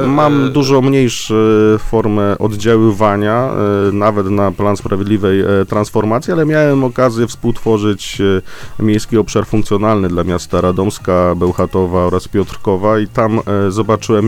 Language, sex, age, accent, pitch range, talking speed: Polish, male, 30-49, native, 95-115 Hz, 110 wpm